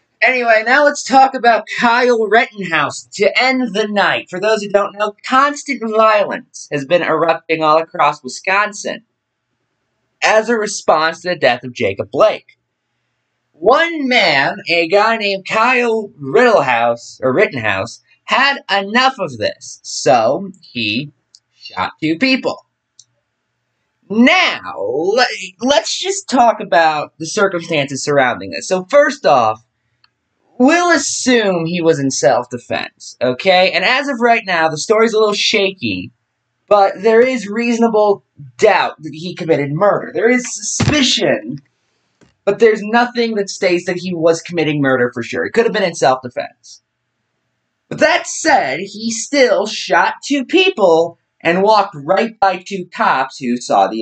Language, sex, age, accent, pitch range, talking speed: English, male, 20-39, American, 145-235 Hz, 140 wpm